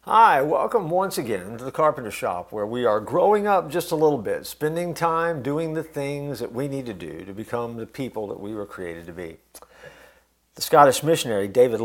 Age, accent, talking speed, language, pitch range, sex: 50-69, American, 210 wpm, English, 100-135 Hz, male